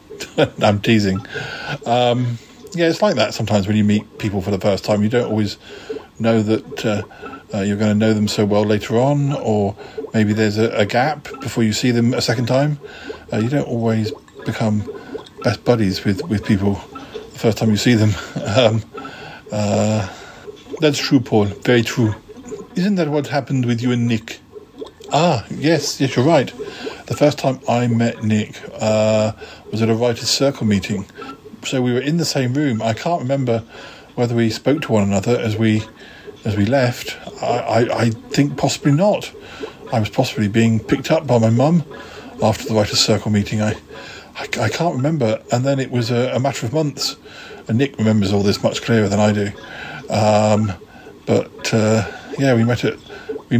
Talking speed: 185 wpm